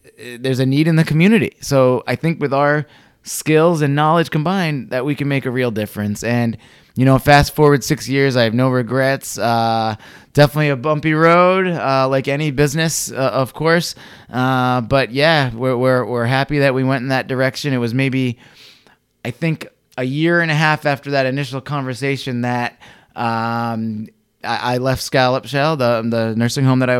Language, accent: English, American